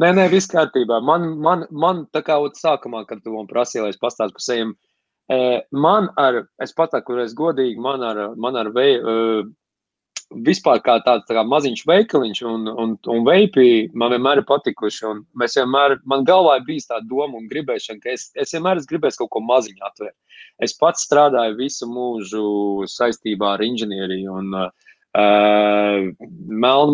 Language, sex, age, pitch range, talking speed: English, male, 20-39, 115-170 Hz, 155 wpm